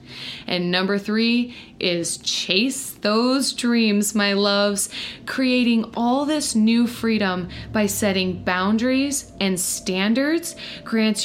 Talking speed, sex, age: 105 wpm, female, 20-39